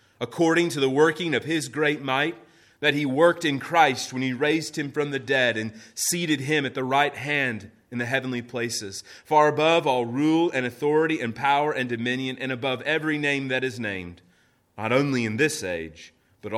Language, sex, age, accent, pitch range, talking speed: English, male, 30-49, American, 115-155 Hz, 195 wpm